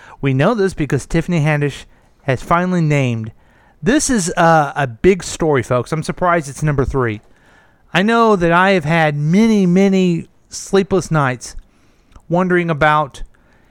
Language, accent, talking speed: English, American, 145 wpm